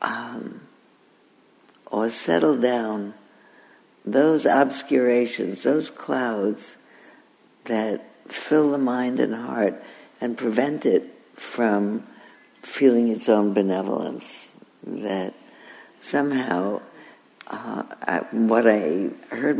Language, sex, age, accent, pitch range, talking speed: English, female, 60-79, American, 105-120 Hz, 85 wpm